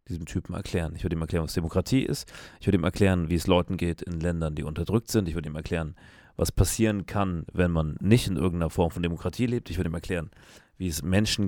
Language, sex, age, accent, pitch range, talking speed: German, male, 30-49, German, 85-110 Hz, 240 wpm